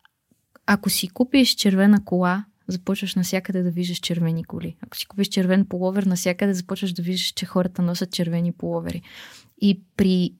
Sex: female